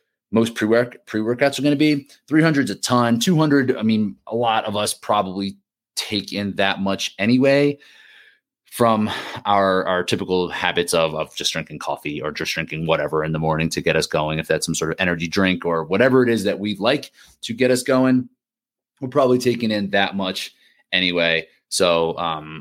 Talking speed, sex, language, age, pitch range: 190 wpm, male, English, 30-49, 85-120 Hz